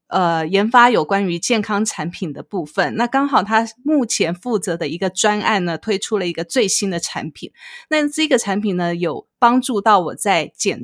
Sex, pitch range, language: female, 175-225 Hz, Chinese